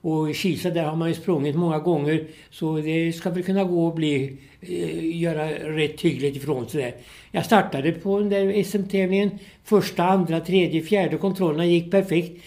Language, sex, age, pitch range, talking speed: Swedish, male, 60-79, 145-175 Hz, 175 wpm